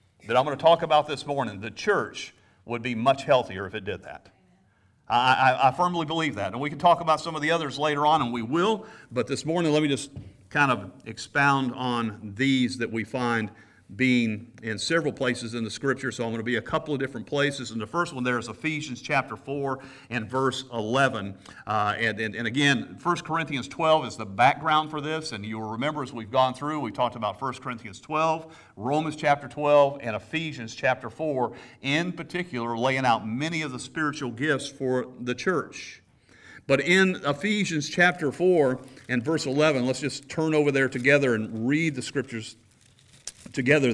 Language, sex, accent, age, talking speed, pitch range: English, male, American, 50-69, 200 wpm, 115-150 Hz